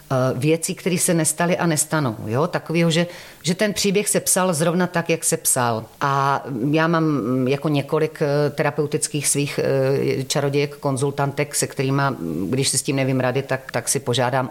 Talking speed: 165 wpm